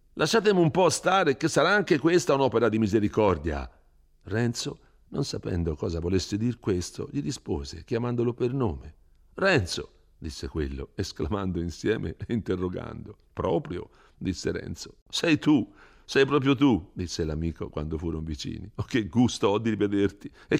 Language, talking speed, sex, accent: Italian, 150 wpm, male, native